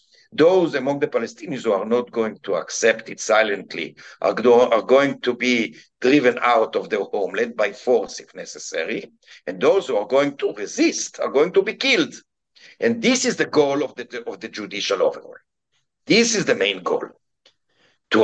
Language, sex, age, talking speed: English, male, 60-79, 180 wpm